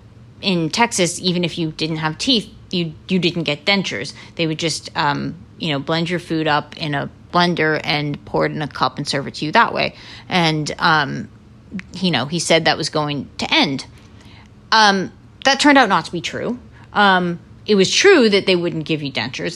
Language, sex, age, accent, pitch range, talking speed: English, female, 30-49, American, 150-190 Hz, 210 wpm